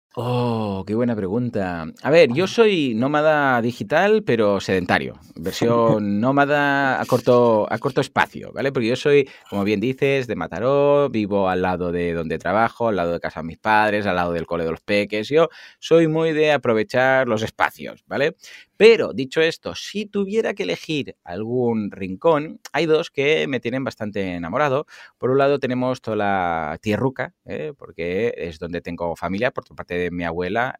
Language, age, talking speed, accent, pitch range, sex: Spanish, 30-49, 175 wpm, Spanish, 90-135 Hz, male